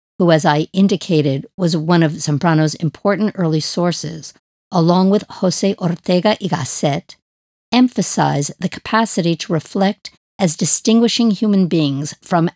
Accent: American